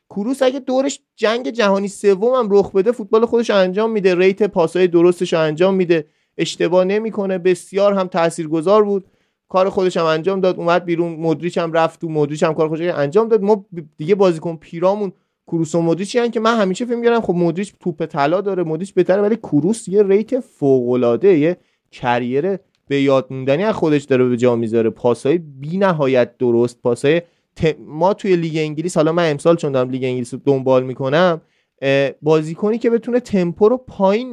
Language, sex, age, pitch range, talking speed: Persian, male, 30-49, 160-205 Hz, 170 wpm